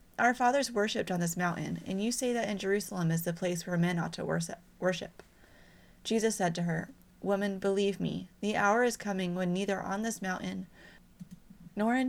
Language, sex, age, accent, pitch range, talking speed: English, female, 30-49, American, 180-210 Hz, 190 wpm